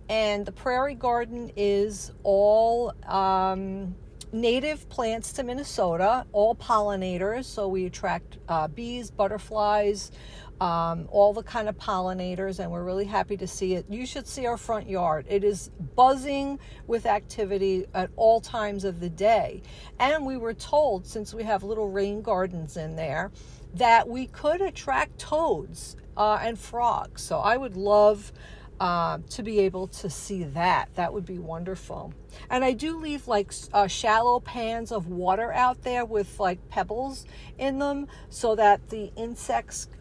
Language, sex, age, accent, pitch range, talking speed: English, female, 50-69, American, 190-235 Hz, 155 wpm